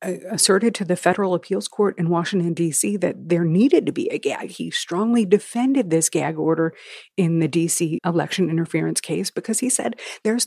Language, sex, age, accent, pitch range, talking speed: English, female, 50-69, American, 180-245 Hz, 185 wpm